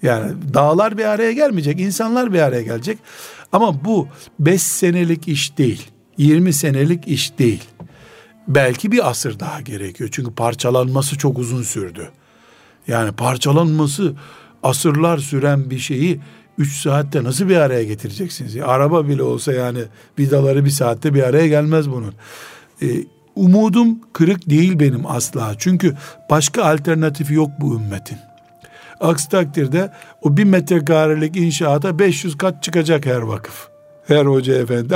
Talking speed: 130 wpm